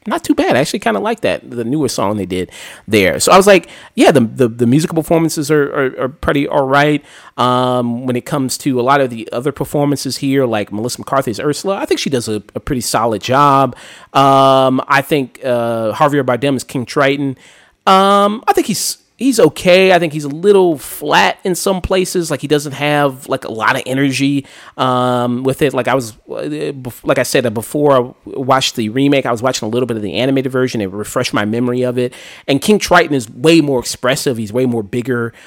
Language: English